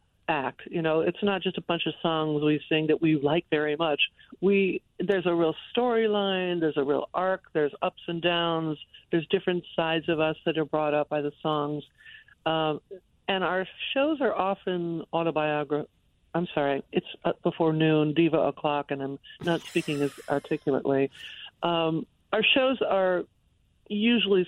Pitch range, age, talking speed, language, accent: 150-180 Hz, 60-79, 165 wpm, English, American